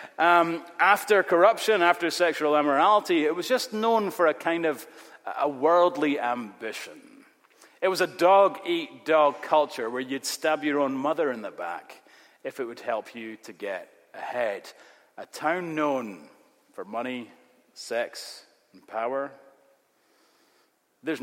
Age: 30-49